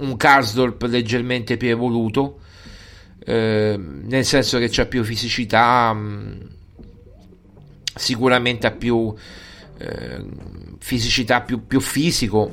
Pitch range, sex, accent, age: 100-120 Hz, male, native, 30-49